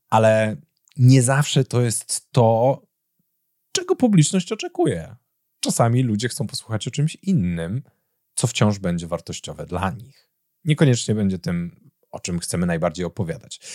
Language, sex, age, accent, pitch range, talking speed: Polish, male, 30-49, native, 95-145 Hz, 130 wpm